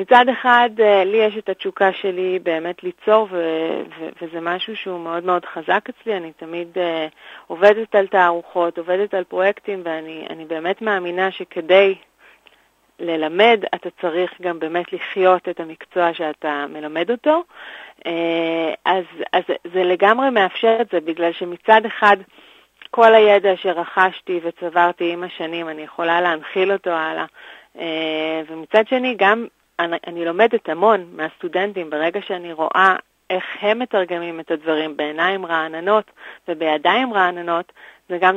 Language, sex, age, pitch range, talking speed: Hebrew, female, 30-49, 170-205 Hz, 135 wpm